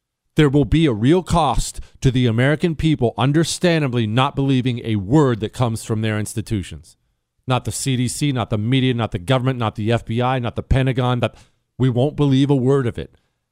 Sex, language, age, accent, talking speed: male, English, 40-59, American, 190 wpm